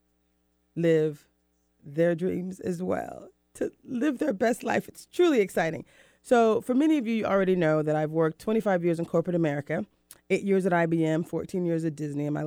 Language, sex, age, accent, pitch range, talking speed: English, female, 30-49, American, 165-230 Hz, 190 wpm